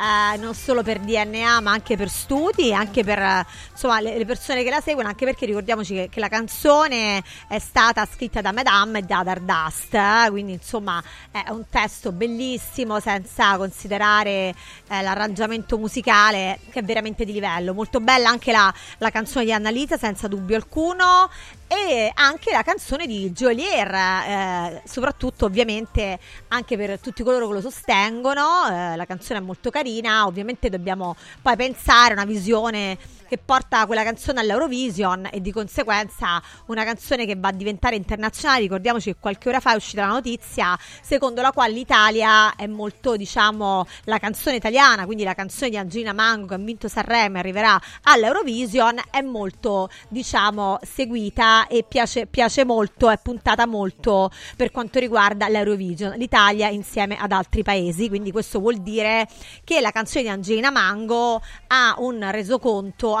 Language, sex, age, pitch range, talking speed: Italian, female, 30-49, 200-245 Hz, 160 wpm